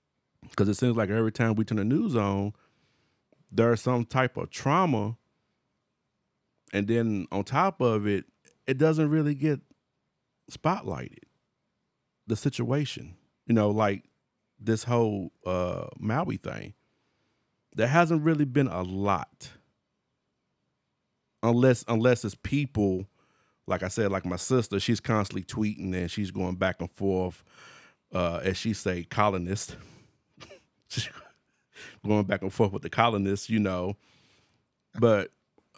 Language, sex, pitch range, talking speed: English, male, 100-130 Hz, 130 wpm